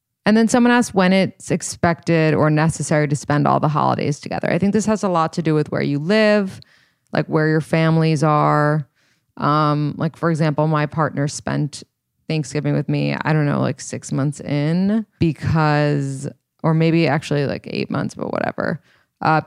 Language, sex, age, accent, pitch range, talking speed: English, female, 20-39, American, 145-170 Hz, 180 wpm